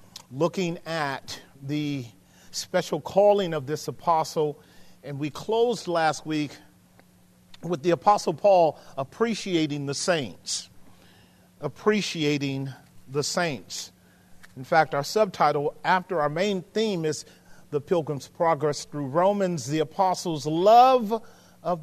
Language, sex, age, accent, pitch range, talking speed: English, male, 40-59, American, 145-200 Hz, 115 wpm